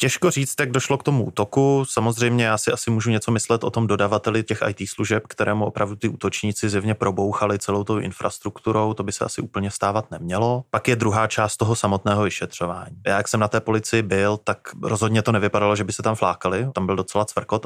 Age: 20-39